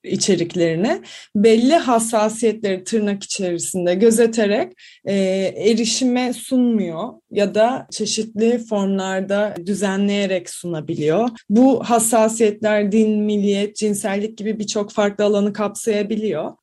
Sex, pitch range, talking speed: female, 205-250 Hz, 90 wpm